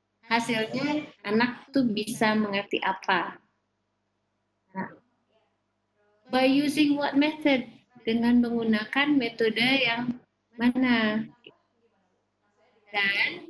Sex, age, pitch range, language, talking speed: female, 20-39, 215-260 Hz, English, 75 wpm